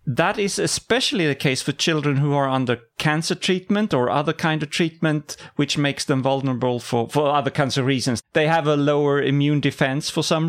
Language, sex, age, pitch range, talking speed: English, male, 30-49, 130-175 Hz, 200 wpm